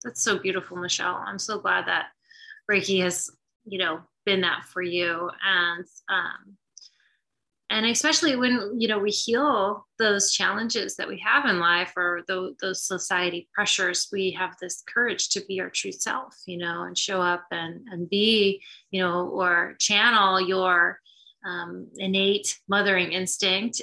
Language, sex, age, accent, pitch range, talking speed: English, female, 20-39, American, 180-205 Hz, 160 wpm